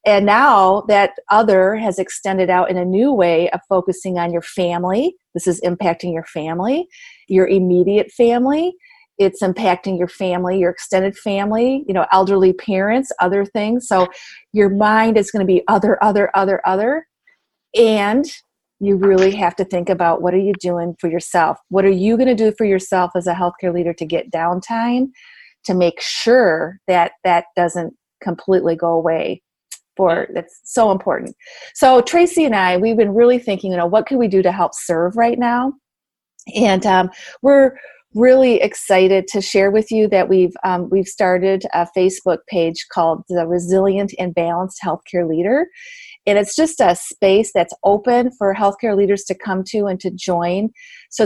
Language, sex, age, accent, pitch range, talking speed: English, female, 40-59, American, 180-225 Hz, 175 wpm